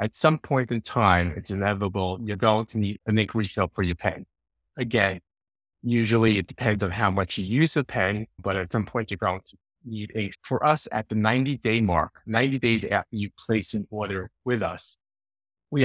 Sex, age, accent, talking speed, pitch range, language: male, 30-49, American, 205 wpm, 100-125 Hz, English